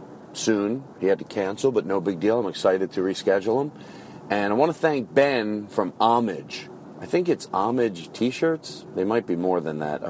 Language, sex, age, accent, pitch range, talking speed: English, male, 40-59, American, 85-110 Hz, 200 wpm